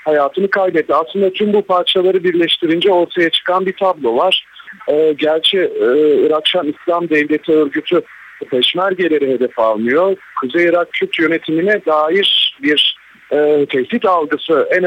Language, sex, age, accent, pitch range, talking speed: Turkish, male, 40-59, native, 135-190 Hz, 135 wpm